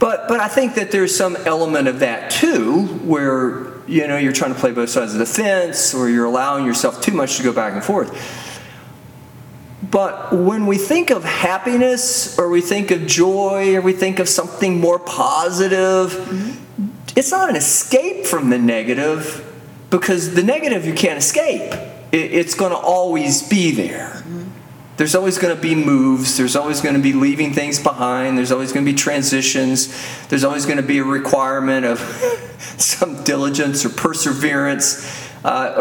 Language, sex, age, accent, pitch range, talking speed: English, male, 40-59, American, 130-185 Hz, 175 wpm